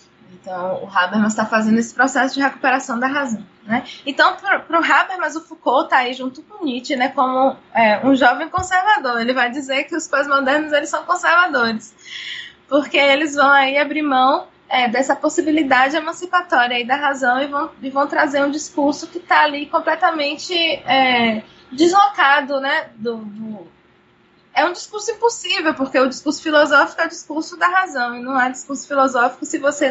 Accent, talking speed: Brazilian, 165 wpm